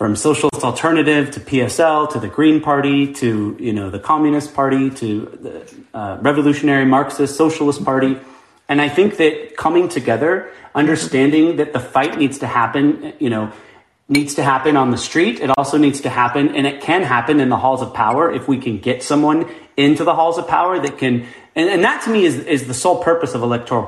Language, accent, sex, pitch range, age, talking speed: English, American, male, 125-175 Hz, 30-49, 205 wpm